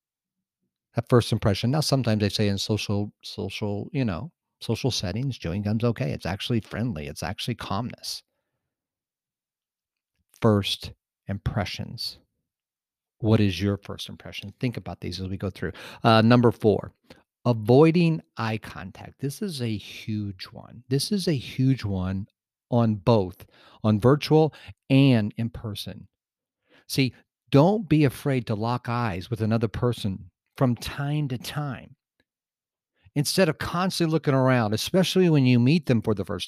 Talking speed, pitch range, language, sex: 145 wpm, 110-140 Hz, English, male